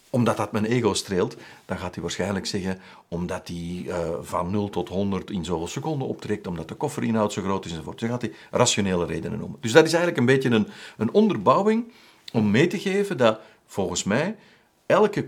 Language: Dutch